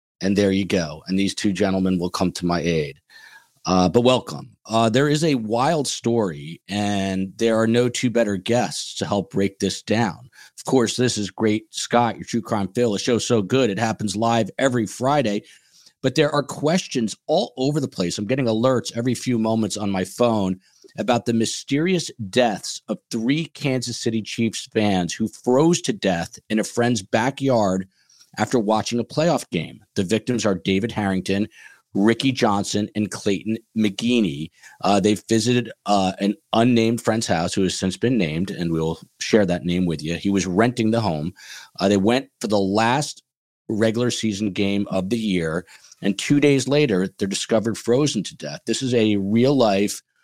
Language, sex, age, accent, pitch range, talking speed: English, male, 40-59, American, 95-120 Hz, 185 wpm